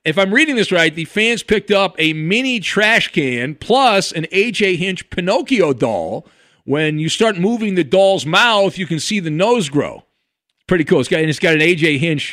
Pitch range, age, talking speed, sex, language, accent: 155-225 Hz, 50-69, 195 wpm, male, English, American